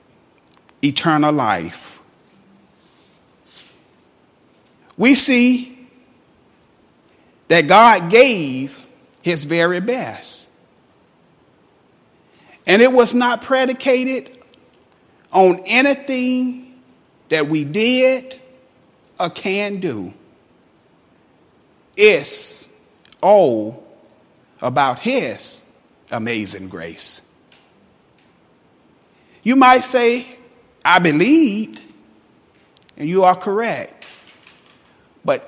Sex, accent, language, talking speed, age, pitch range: male, American, English, 65 wpm, 40-59, 175-260 Hz